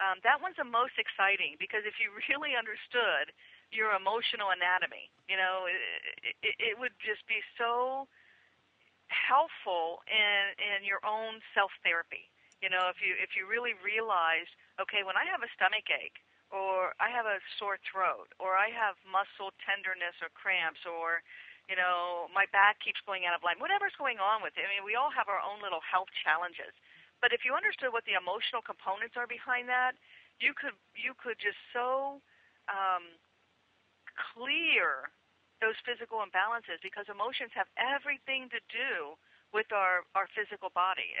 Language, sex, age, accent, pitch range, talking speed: English, female, 50-69, American, 185-245 Hz, 165 wpm